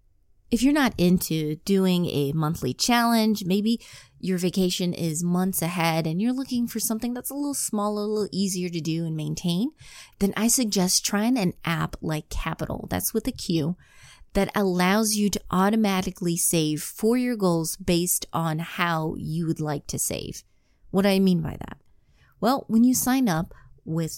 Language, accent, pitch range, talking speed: English, American, 160-210 Hz, 175 wpm